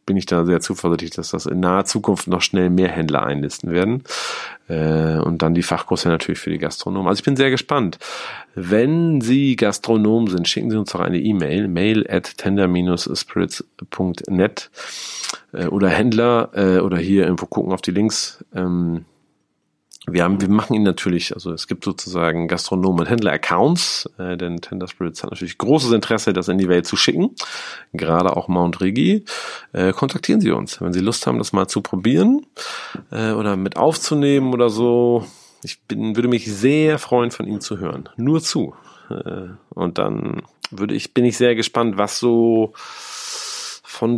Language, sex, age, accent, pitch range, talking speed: German, male, 40-59, German, 95-120 Hz, 175 wpm